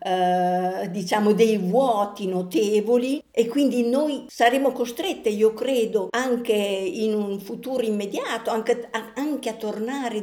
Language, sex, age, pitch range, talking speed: Italian, female, 50-69, 195-245 Hz, 125 wpm